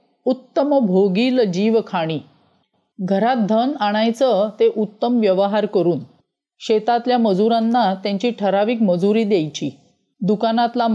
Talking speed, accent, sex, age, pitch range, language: 100 wpm, native, female, 40-59, 195-240 Hz, Marathi